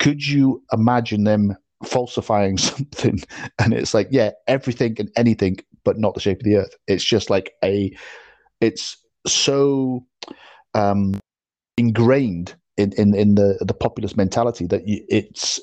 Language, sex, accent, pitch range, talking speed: English, male, British, 100-125 Hz, 140 wpm